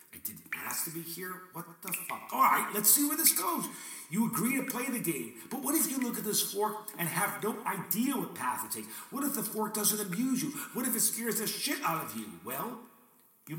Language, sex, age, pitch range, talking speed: English, male, 50-69, 175-245 Hz, 245 wpm